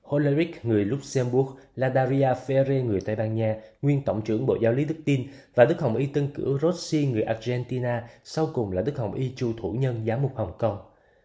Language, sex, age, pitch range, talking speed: Vietnamese, male, 20-39, 115-145 Hz, 210 wpm